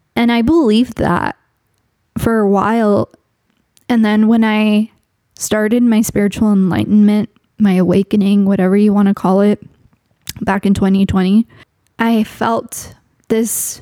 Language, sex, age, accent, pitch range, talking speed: English, female, 10-29, American, 195-225 Hz, 120 wpm